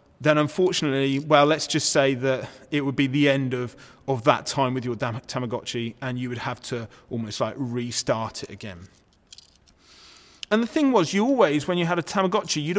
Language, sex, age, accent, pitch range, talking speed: English, male, 30-49, British, 135-175 Hz, 195 wpm